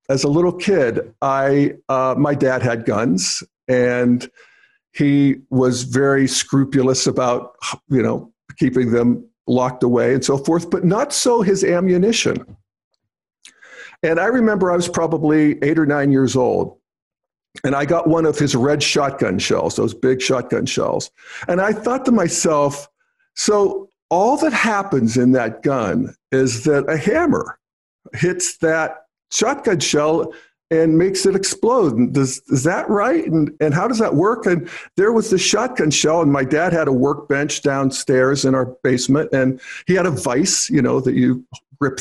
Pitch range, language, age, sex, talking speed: 130-195 Hz, English, 50-69, male, 165 wpm